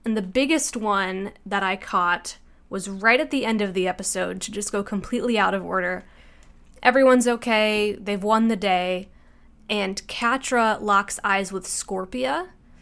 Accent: American